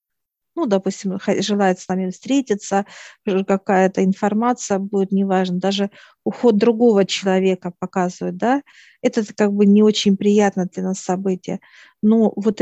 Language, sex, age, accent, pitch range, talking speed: Russian, female, 50-69, native, 195-225 Hz, 130 wpm